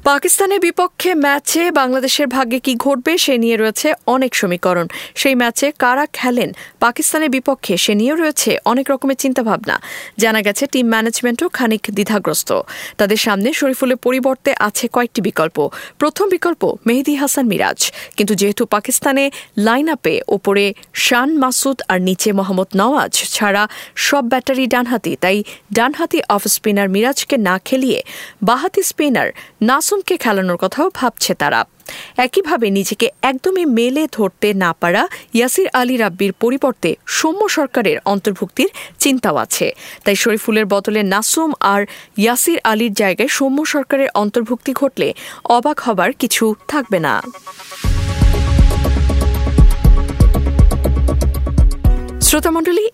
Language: English